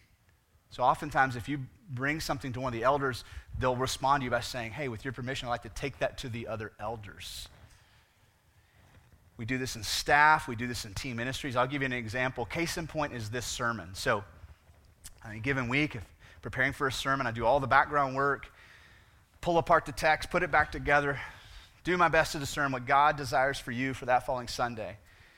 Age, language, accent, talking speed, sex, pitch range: 30-49, English, American, 210 wpm, male, 120-175 Hz